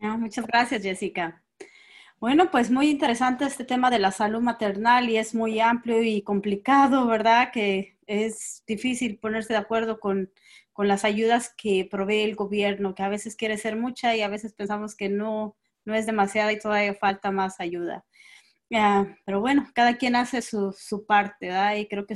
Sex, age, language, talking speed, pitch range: female, 20-39, English, 180 wpm, 200-235 Hz